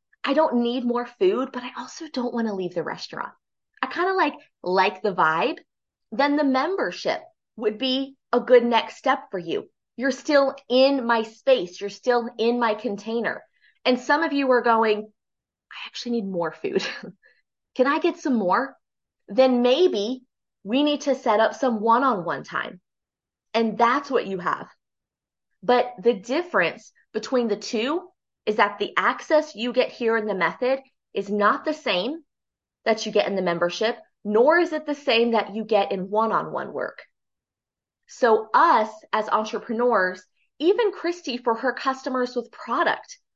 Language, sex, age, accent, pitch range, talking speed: English, female, 20-39, American, 215-270 Hz, 165 wpm